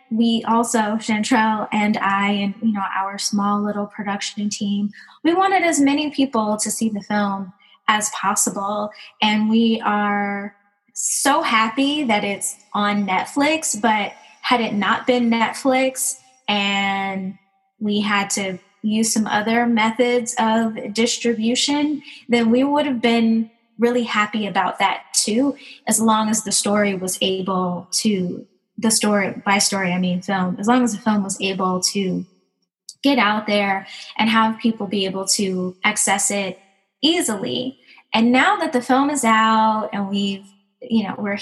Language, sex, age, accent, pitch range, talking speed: English, female, 20-39, American, 200-240 Hz, 155 wpm